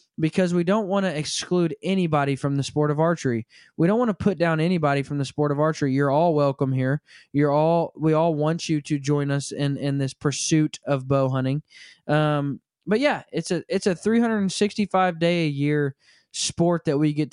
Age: 20-39